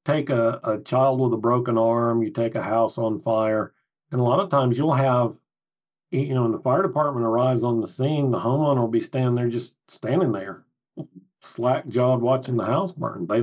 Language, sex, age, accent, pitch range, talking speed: English, male, 40-59, American, 115-135 Hz, 205 wpm